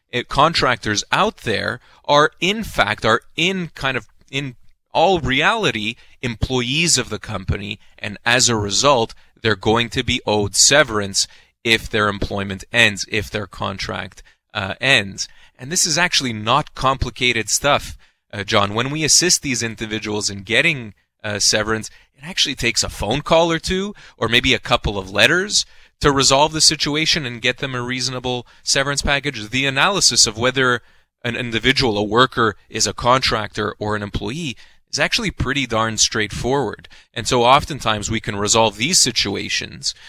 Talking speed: 160 wpm